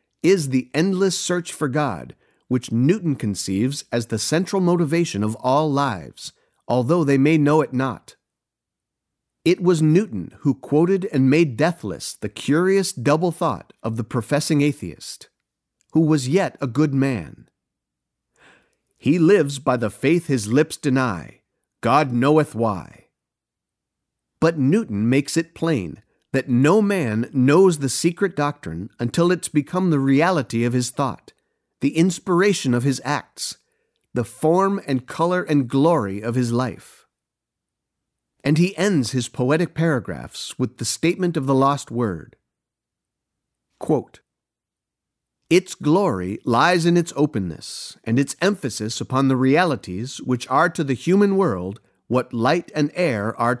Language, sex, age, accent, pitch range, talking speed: English, male, 50-69, American, 120-165 Hz, 140 wpm